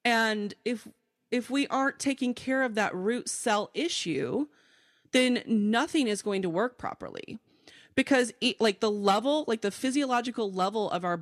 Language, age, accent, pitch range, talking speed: English, 30-49, American, 195-260 Hz, 155 wpm